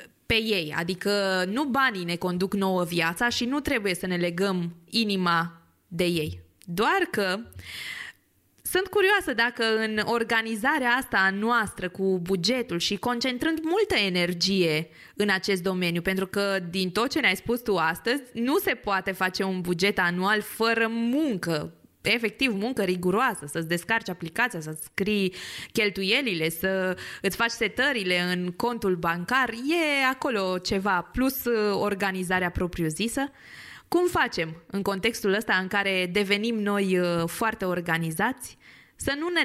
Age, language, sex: 20-39, Romanian, female